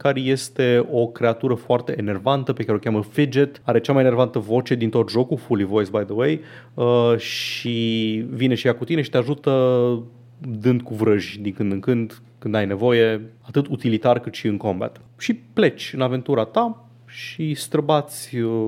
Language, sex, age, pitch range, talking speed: Romanian, male, 30-49, 110-135 Hz, 180 wpm